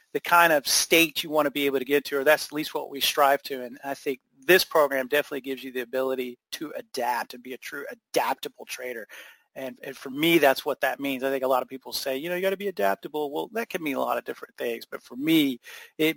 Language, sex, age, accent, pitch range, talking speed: English, male, 30-49, American, 135-170 Hz, 270 wpm